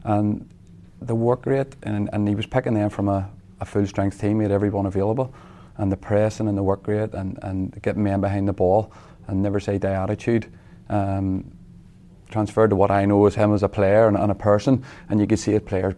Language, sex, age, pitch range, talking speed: English, male, 30-49, 95-105 Hz, 225 wpm